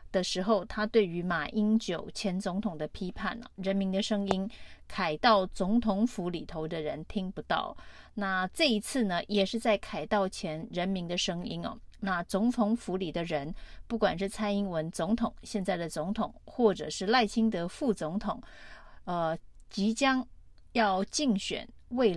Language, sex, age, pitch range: Chinese, female, 30-49, 185-220 Hz